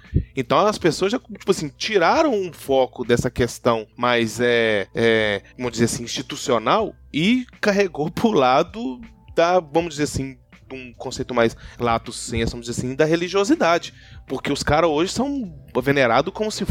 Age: 20-39